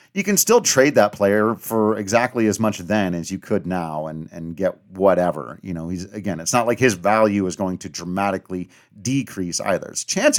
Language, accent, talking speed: English, American, 210 wpm